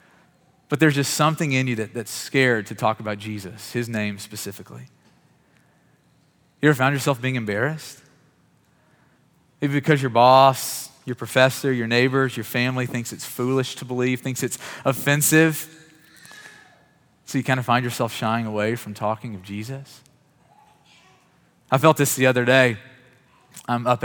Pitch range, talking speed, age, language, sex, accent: 115-135 Hz, 145 wpm, 30-49, English, male, American